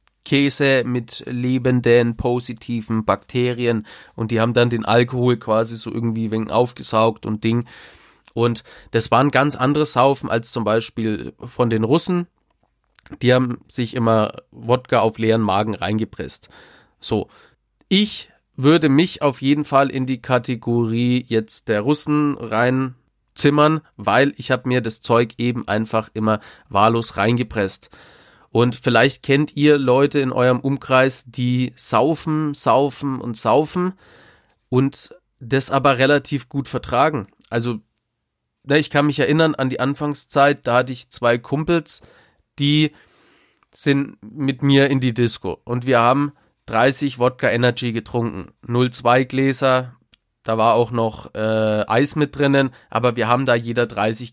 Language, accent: German, German